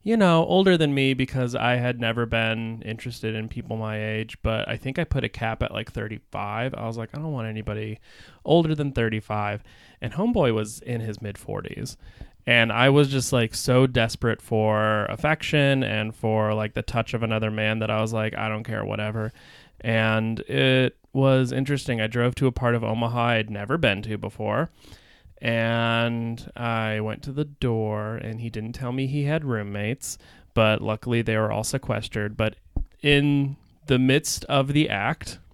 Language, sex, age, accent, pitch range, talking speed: English, male, 30-49, American, 110-130 Hz, 185 wpm